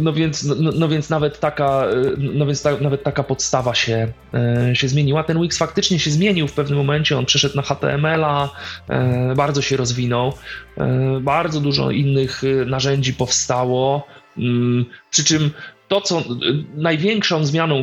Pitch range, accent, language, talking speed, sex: 130-155 Hz, native, Polish, 120 wpm, male